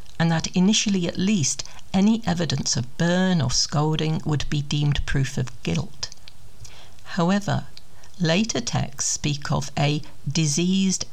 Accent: British